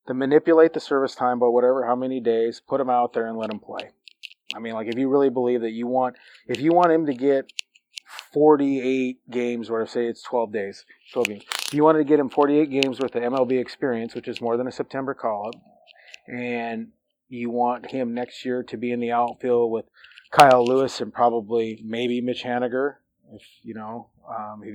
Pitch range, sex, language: 115-130 Hz, male, English